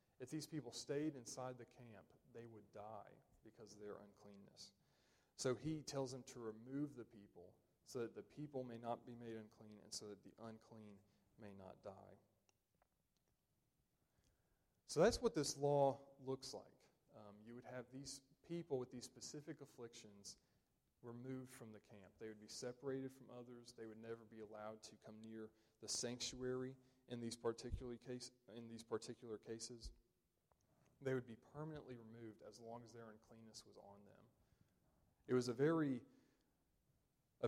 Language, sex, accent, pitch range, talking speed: English, male, American, 110-130 Hz, 160 wpm